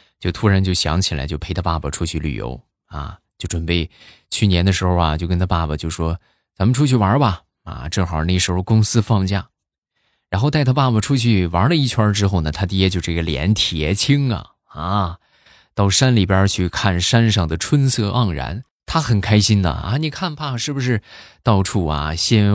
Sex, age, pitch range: male, 20-39, 85-125 Hz